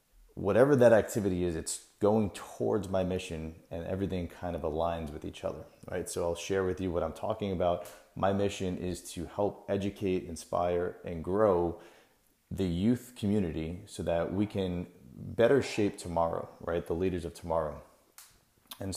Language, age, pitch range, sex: English, 30-49, 85-95 Hz, male